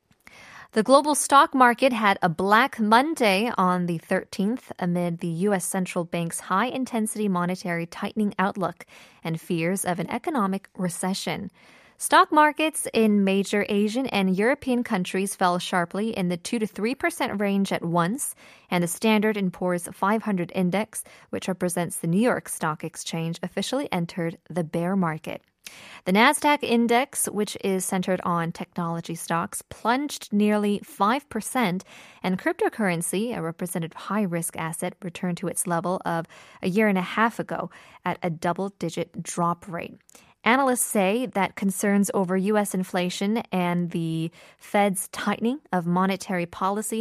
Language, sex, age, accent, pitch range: Korean, female, 20-39, American, 175-225 Hz